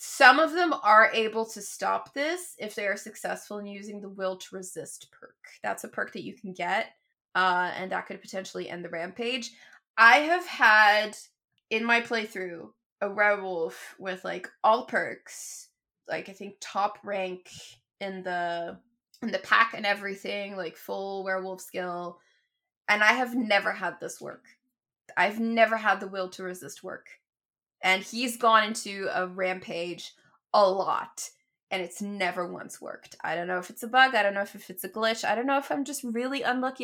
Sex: female